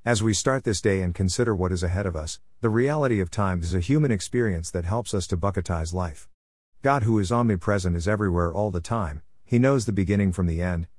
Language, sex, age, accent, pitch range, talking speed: English, male, 50-69, American, 85-115 Hz, 230 wpm